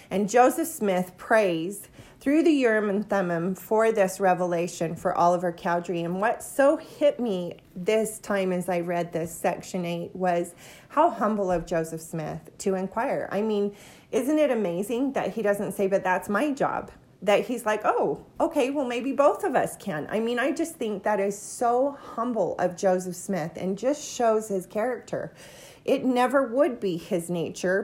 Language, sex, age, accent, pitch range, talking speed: English, female, 40-59, American, 180-225 Hz, 180 wpm